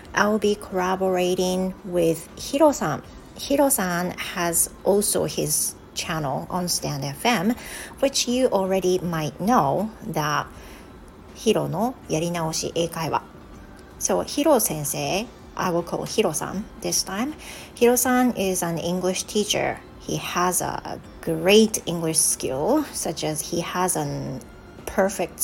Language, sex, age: Japanese, female, 40-59